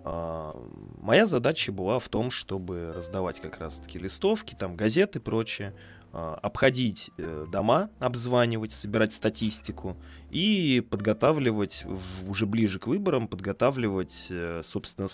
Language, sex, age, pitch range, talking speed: Russian, male, 20-39, 90-120 Hz, 110 wpm